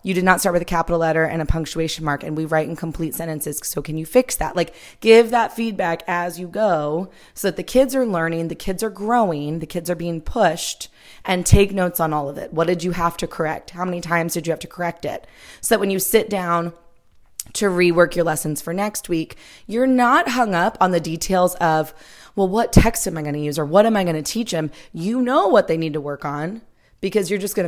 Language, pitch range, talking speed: English, 160-200 Hz, 250 wpm